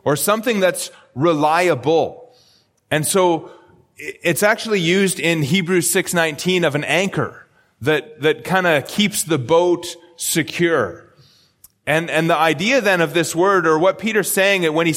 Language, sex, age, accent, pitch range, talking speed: English, male, 30-49, American, 150-185 Hz, 150 wpm